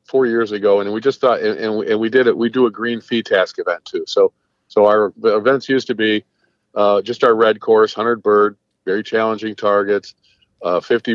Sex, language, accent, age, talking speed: male, English, American, 50-69, 210 wpm